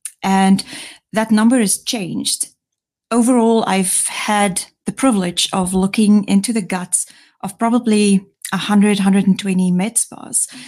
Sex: female